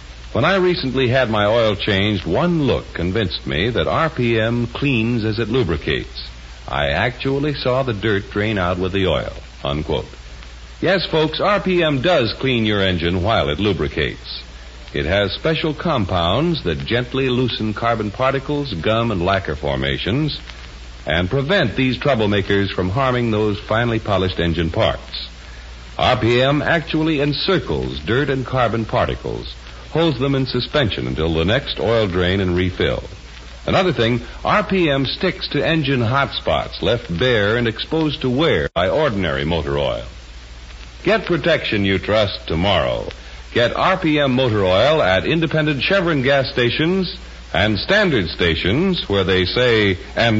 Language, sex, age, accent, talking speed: English, male, 60-79, American, 140 wpm